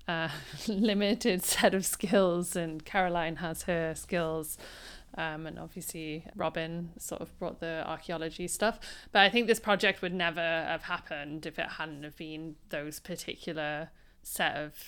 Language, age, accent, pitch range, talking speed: English, 30-49, British, 160-190 Hz, 155 wpm